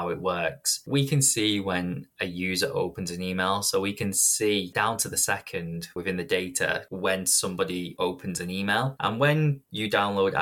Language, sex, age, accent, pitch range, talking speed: English, male, 20-39, British, 90-115 Hz, 185 wpm